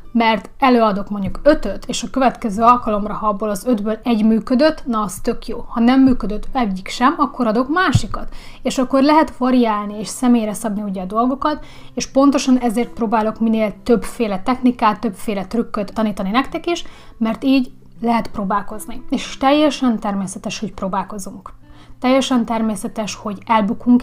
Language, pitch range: Hungarian, 205-245 Hz